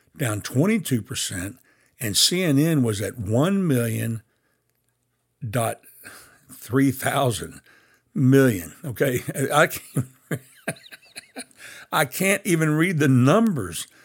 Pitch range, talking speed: 115-145 Hz, 80 wpm